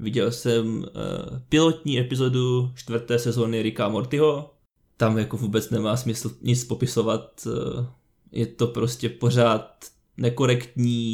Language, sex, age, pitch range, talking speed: Czech, male, 20-39, 115-125 Hz, 110 wpm